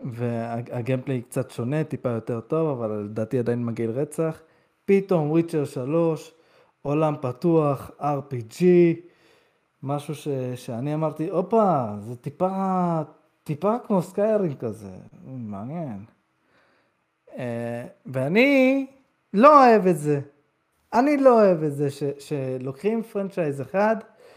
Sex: male